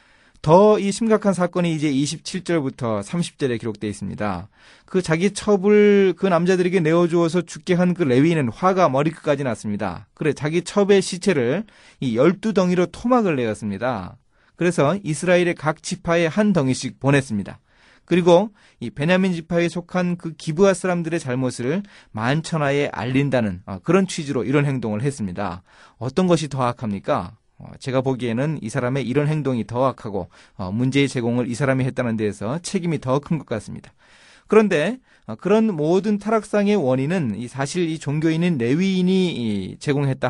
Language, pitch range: Korean, 120-175 Hz